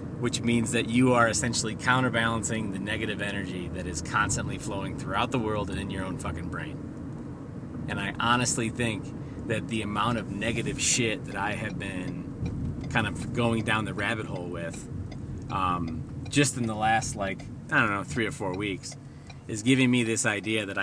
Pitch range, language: 105-130 Hz, English